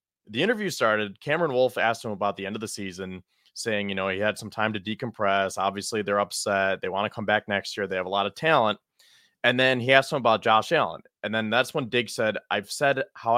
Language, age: English, 30-49